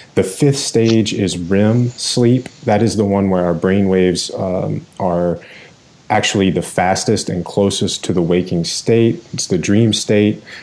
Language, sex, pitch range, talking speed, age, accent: English, male, 90-105 Hz, 150 wpm, 30-49, American